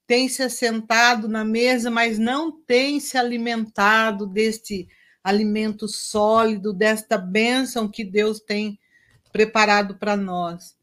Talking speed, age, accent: 115 wpm, 50-69, Brazilian